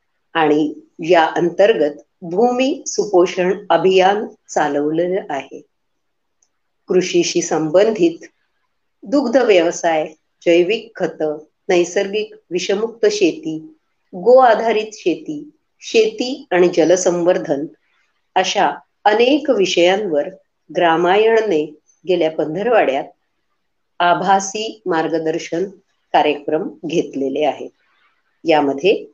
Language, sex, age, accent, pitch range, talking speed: Marathi, female, 50-69, native, 165-265 Hz, 70 wpm